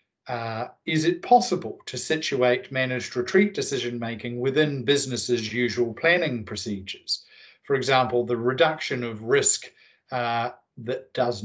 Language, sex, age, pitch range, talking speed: Danish, male, 50-69, 115-150 Hz, 120 wpm